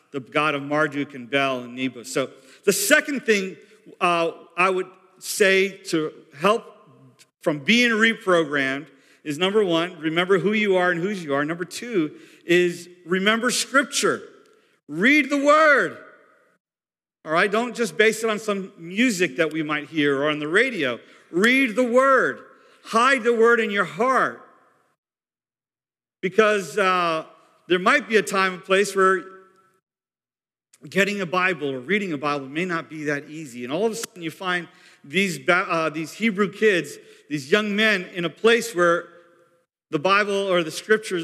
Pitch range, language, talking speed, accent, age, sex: 160-205 Hz, English, 165 wpm, American, 50-69, male